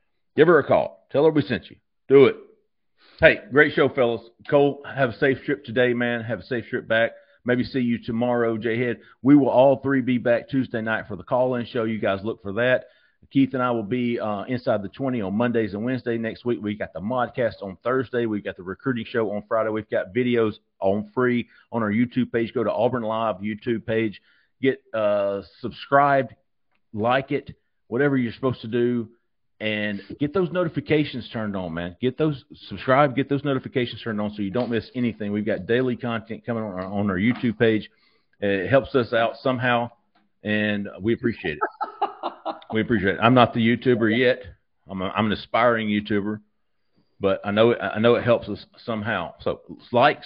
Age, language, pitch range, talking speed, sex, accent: 40-59, English, 105-125 Hz, 195 wpm, male, American